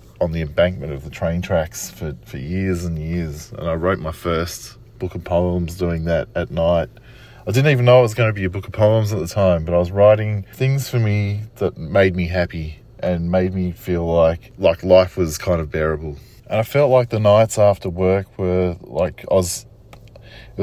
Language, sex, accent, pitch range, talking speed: English, male, Australian, 85-110 Hz, 220 wpm